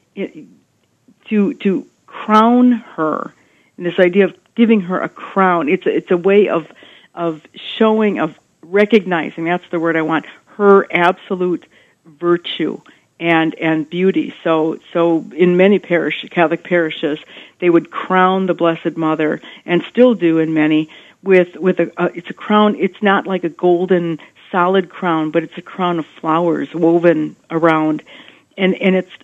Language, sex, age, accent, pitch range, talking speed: English, female, 50-69, American, 165-195 Hz, 160 wpm